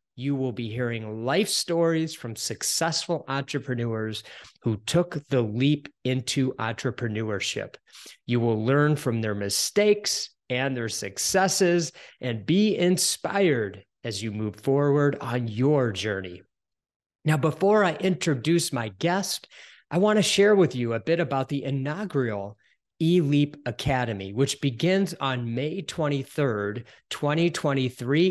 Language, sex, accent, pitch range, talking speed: English, male, American, 120-175 Hz, 125 wpm